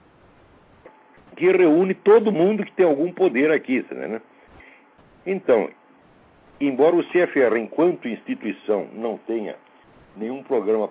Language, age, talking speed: Portuguese, 60-79, 110 wpm